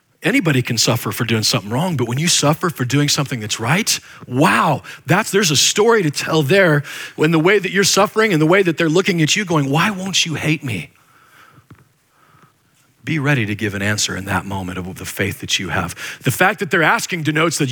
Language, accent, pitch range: English, American, 130-170 Hz